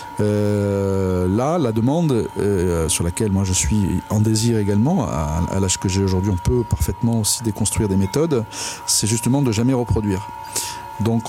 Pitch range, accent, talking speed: 105-125 Hz, French, 170 wpm